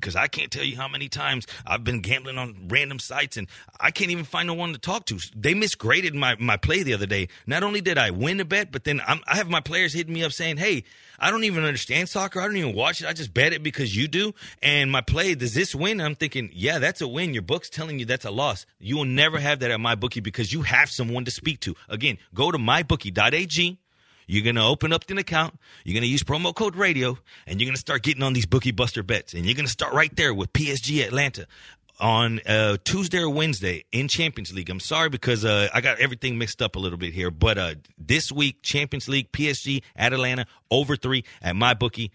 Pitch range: 115-150 Hz